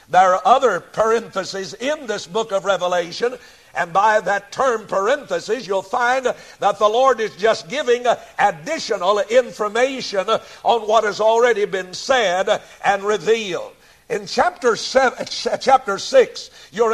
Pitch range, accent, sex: 210-275 Hz, American, male